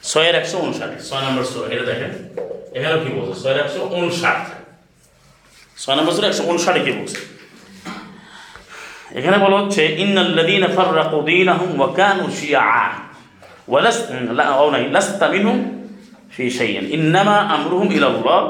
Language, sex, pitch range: Bengali, male, 150-215 Hz